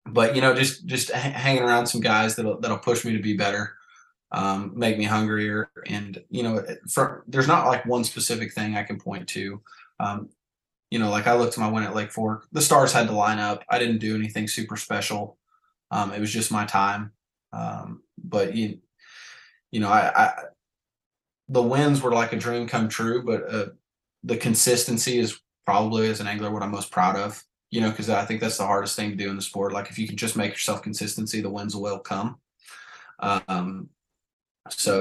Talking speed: 205 wpm